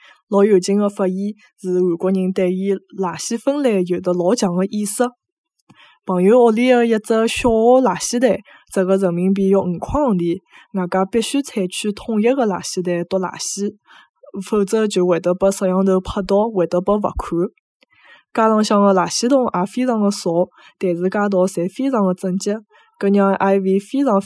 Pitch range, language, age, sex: 185-230 Hz, Chinese, 20-39, female